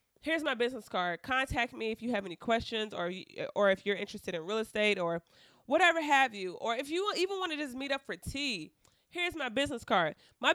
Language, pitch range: English, 195-255 Hz